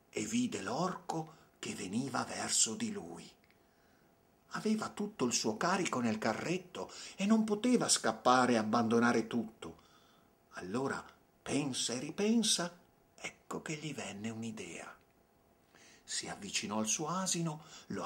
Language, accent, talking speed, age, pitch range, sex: Italian, native, 125 wpm, 50-69, 160-215 Hz, male